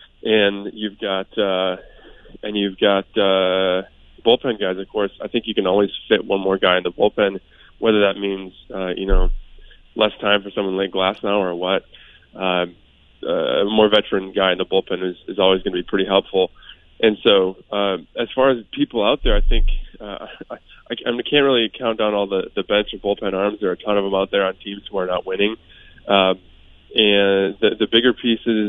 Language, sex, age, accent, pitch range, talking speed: English, male, 20-39, American, 95-105 Hz, 210 wpm